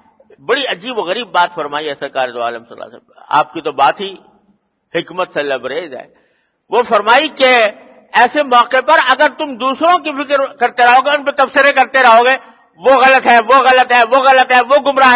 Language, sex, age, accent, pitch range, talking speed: English, male, 50-69, Indian, 190-265 Hz, 230 wpm